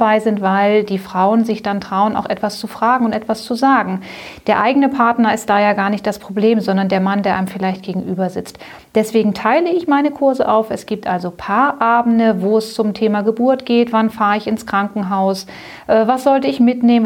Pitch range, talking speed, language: 200-230 Hz, 205 wpm, German